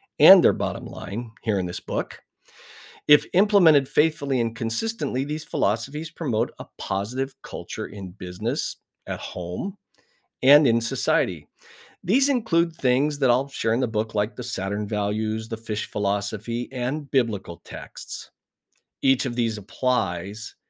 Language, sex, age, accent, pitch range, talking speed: English, male, 50-69, American, 105-140 Hz, 140 wpm